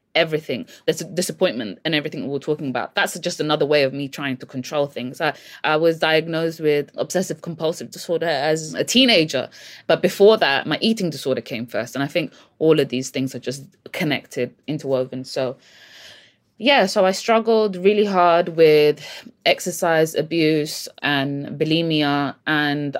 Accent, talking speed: British, 160 wpm